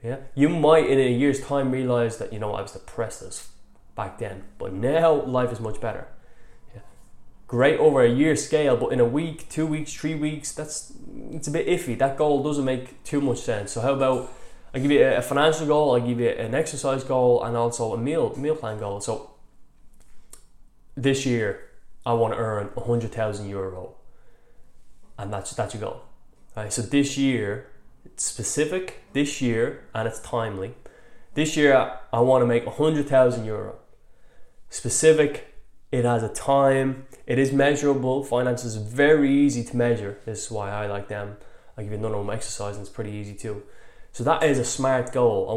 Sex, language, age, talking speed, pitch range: male, English, 20-39, 190 wpm, 110-140 Hz